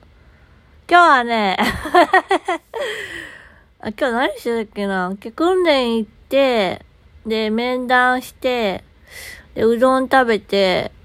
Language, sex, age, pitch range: Japanese, female, 20-39, 190-260 Hz